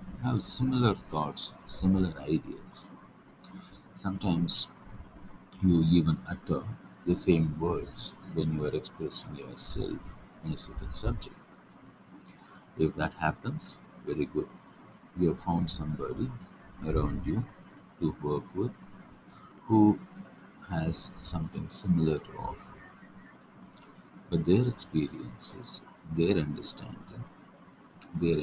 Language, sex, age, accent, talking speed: Tamil, male, 60-79, native, 100 wpm